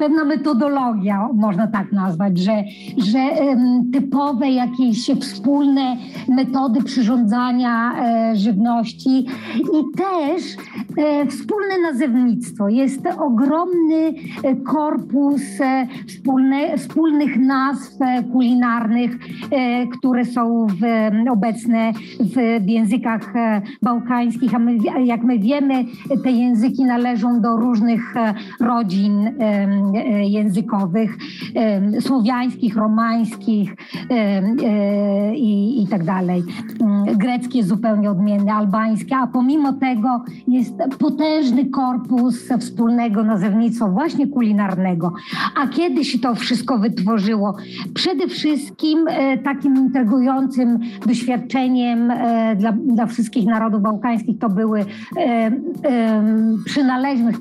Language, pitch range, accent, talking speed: Polish, 220-265 Hz, native, 85 wpm